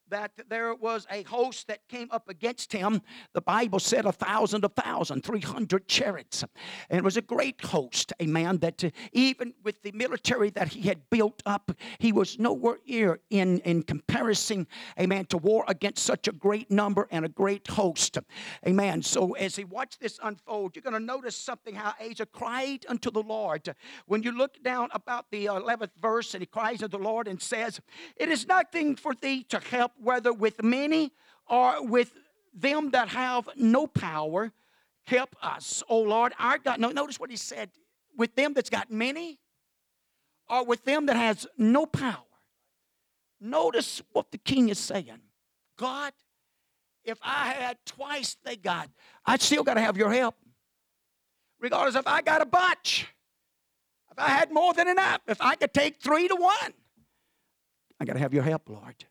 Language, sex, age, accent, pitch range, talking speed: English, male, 50-69, American, 205-255 Hz, 180 wpm